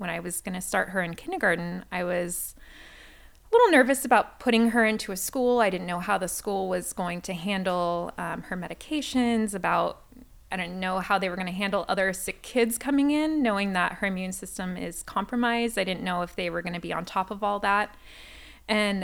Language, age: English, 20-39